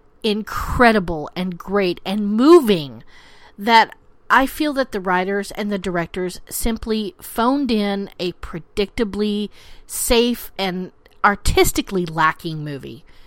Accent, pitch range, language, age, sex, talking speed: American, 190-260 Hz, English, 40-59, female, 110 wpm